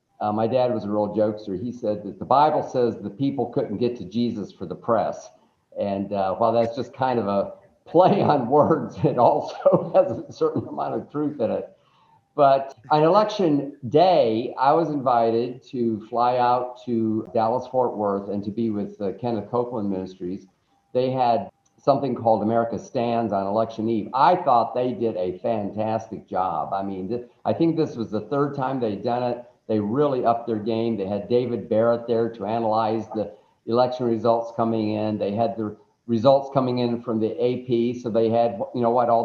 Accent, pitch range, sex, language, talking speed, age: American, 110-135 Hz, male, English, 190 wpm, 50-69